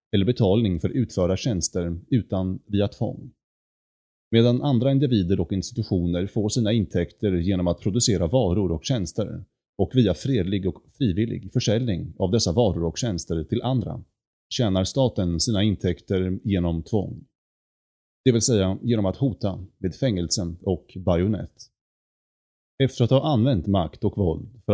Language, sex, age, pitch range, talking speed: Swedish, male, 30-49, 90-120 Hz, 145 wpm